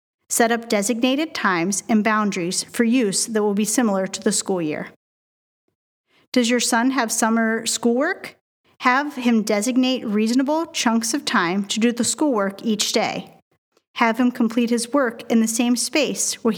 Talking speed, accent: 165 wpm, American